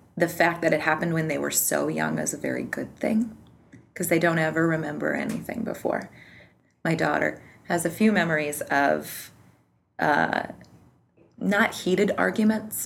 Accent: American